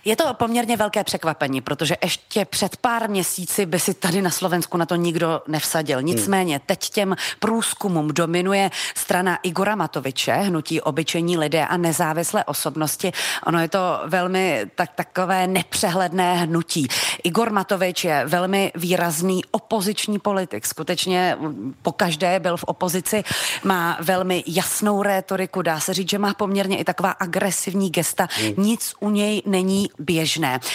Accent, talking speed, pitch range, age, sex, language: native, 140 wpm, 165-200 Hz, 30-49, female, Czech